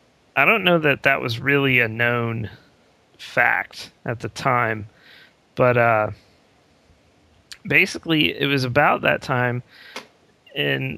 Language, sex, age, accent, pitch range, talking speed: English, male, 30-49, American, 110-135 Hz, 120 wpm